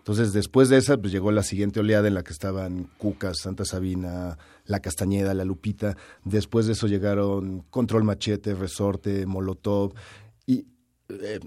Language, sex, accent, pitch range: Spanish, male, Mexican, 100-120 Hz